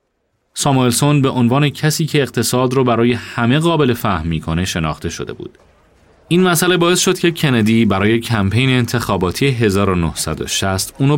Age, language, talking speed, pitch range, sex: 30-49, Persian, 140 wpm, 90-130 Hz, male